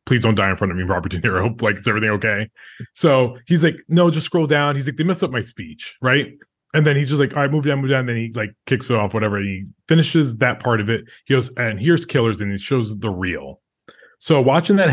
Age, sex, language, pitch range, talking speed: 20-39, male, English, 110-150 Hz, 270 wpm